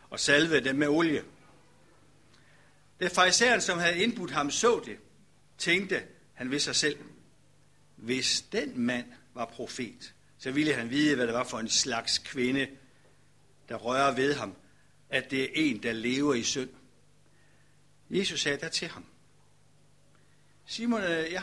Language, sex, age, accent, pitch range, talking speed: Danish, male, 60-79, native, 135-195 Hz, 150 wpm